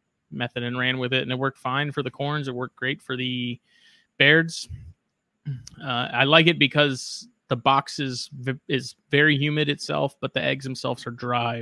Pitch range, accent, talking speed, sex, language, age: 120-145 Hz, American, 185 wpm, male, English, 20-39